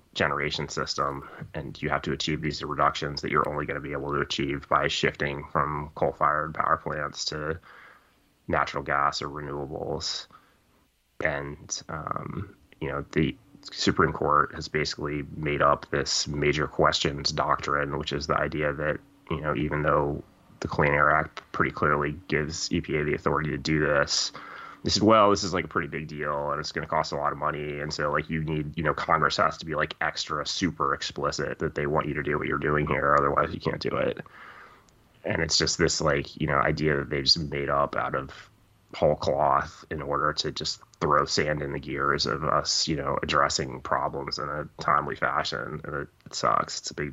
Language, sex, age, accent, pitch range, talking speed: English, male, 20-39, American, 70-75 Hz, 200 wpm